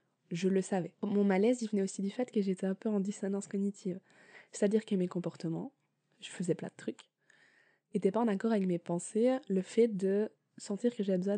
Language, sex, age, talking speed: French, female, 20-39, 210 wpm